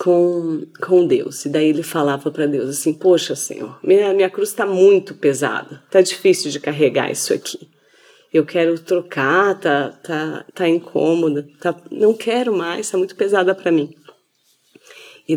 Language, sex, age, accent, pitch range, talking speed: Portuguese, female, 30-49, Brazilian, 160-195 Hz, 160 wpm